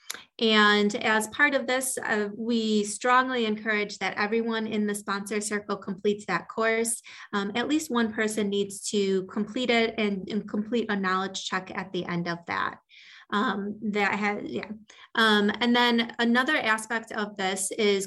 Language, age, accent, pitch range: English, 20-39, American, 190-230 Hz